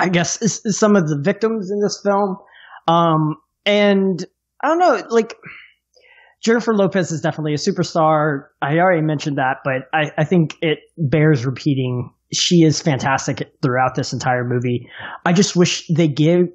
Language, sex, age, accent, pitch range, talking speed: English, male, 20-39, American, 150-185 Hz, 165 wpm